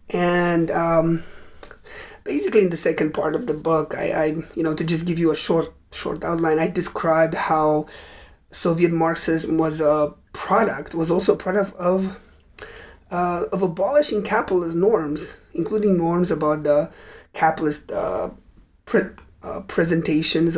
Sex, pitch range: male, 160-200 Hz